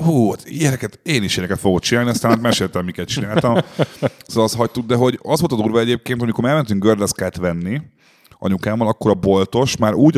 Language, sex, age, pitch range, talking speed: Hungarian, male, 30-49, 95-120 Hz, 190 wpm